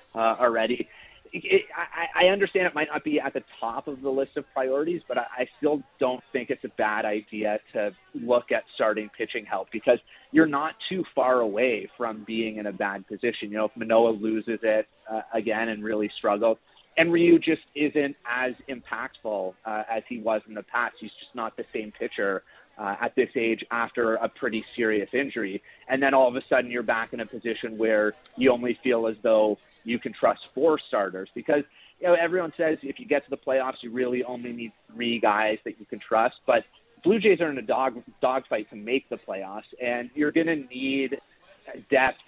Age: 30-49